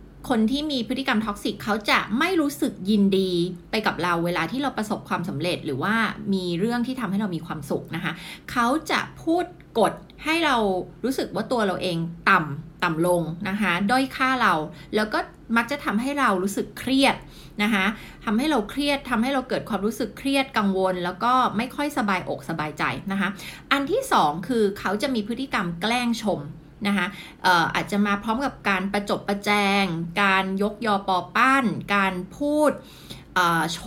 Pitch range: 180-250 Hz